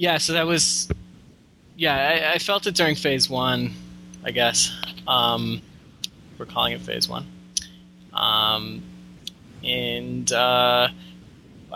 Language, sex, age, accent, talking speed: English, male, 20-39, American, 115 wpm